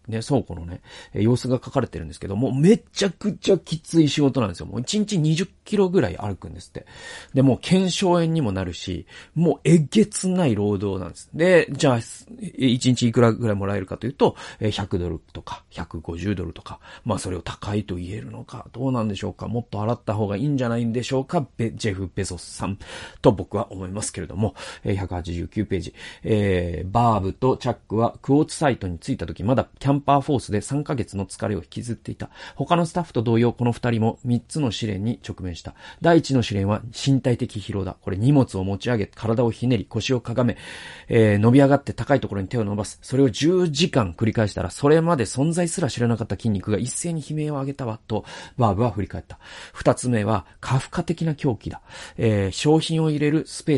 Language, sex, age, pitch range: Japanese, male, 40-59, 100-140 Hz